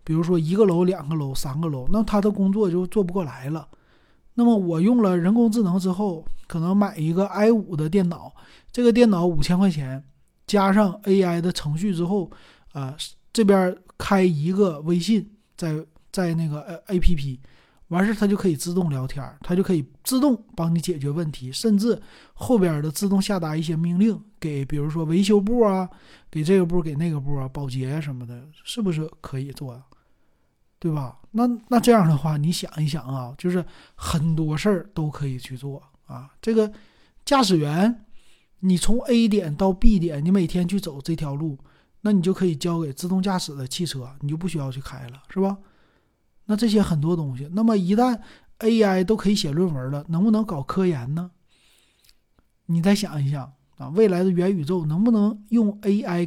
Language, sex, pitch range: Chinese, male, 155-200 Hz